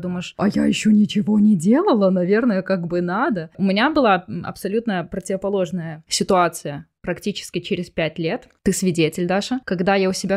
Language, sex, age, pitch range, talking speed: Ukrainian, female, 20-39, 175-220 Hz, 160 wpm